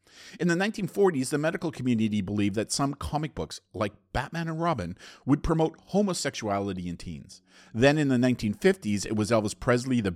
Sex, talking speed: male, 170 wpm